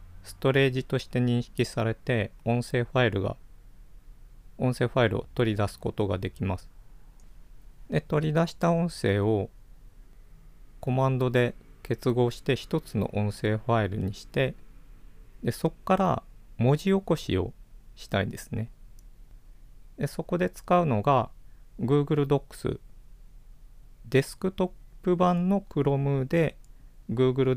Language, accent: Japanese, native